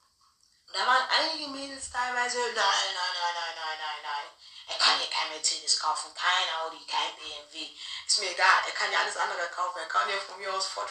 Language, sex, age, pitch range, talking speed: German, female, 20-39, 180-260 Hz, 205 wpm